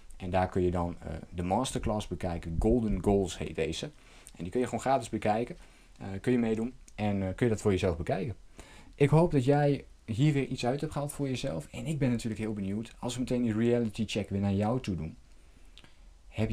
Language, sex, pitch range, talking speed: Dutch, male, 90-120 Hz, 225 wpm